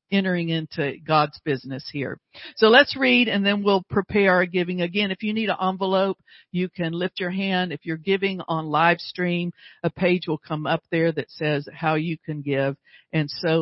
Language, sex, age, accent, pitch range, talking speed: English, female, 50-69, American, 165-220 Hz, 200 wpm